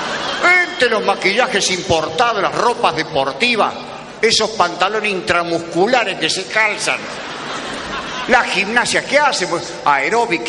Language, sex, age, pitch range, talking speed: Spanish, male, 50-69, 175-230 Hz, 105 wpm